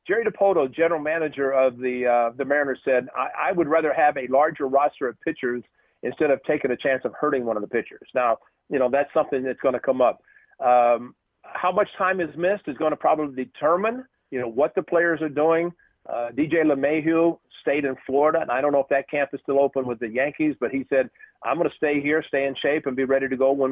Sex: male